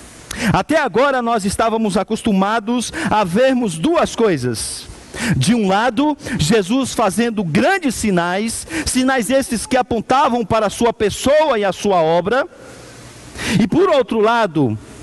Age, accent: 50-69, Brazilian